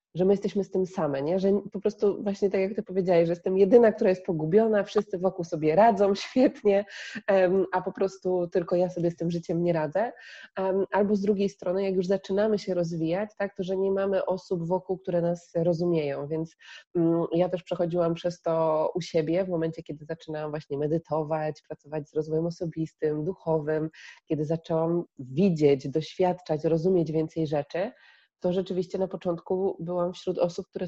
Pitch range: 160-190 Hz